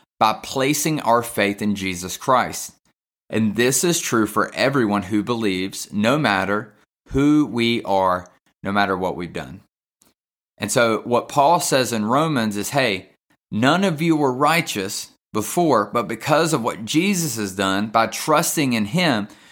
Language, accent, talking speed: English, American, 155 wpm